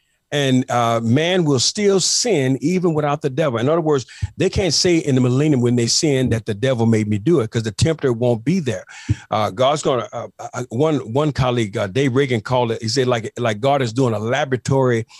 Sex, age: male, 50-69